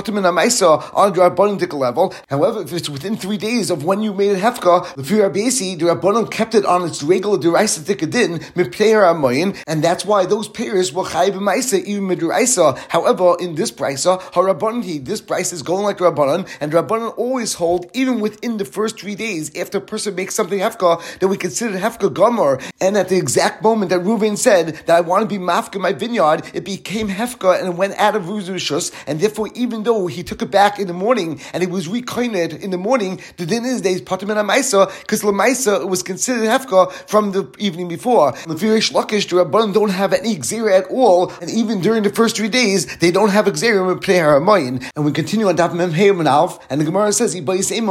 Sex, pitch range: male, 175-215 Hz